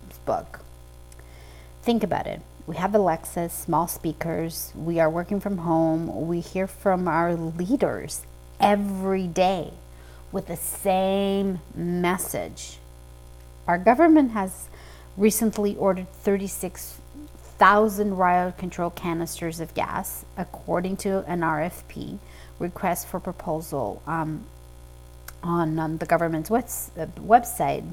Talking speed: 105 wpm